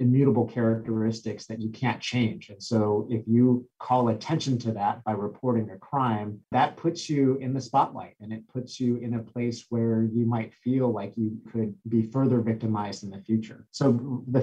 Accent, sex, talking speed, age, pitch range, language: American, male, 190 wpm, 30-49, 110-125 Hz, English